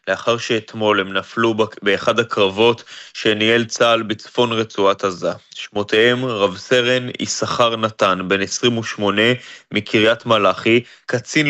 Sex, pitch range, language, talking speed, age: male, 105-125 Hz, Hebrew, 110 wpm, 20-39